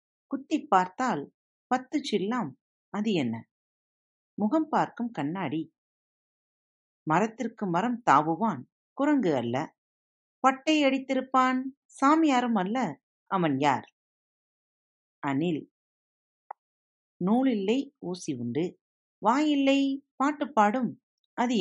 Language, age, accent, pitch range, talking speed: Tamil, 50-69, native, 160-265 Hz, 80 wpm